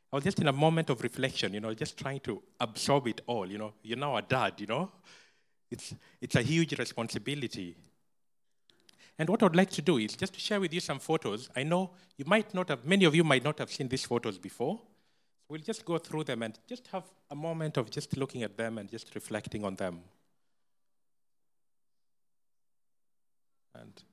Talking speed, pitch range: 195 wpm, 125-185 Hz